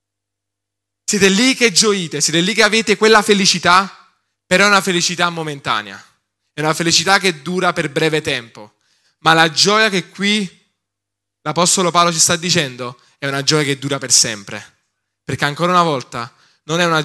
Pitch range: 125-175 Hz